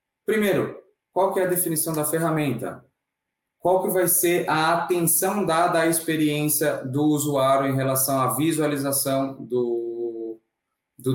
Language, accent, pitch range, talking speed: Portuguese, Brazilian, 125-165 Hz, 135 wpm